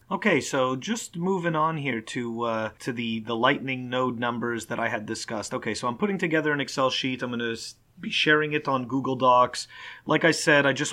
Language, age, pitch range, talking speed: English, 30-49, 125-160 Hz, 220 wpm